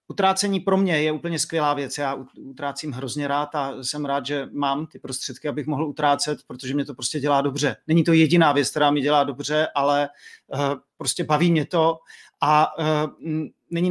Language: Czech